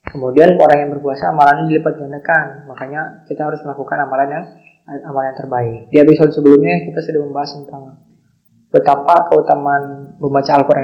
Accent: native